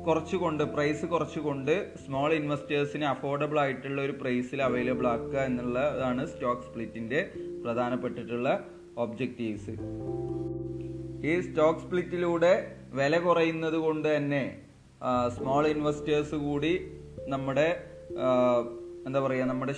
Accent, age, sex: native, 30-49, male